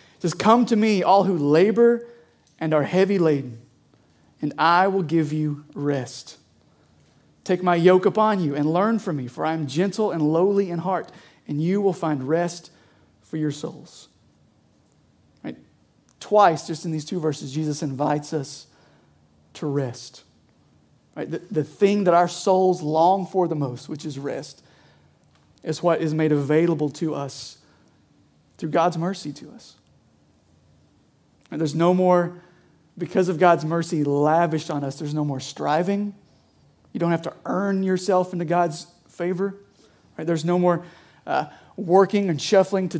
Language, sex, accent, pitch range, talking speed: English, male, American, 150-185 Hz, 160 wpm